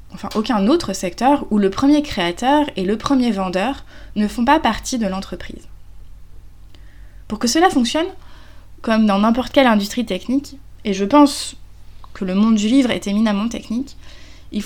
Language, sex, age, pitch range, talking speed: French, female, 20-39, 185-255 Hz, 165 wpm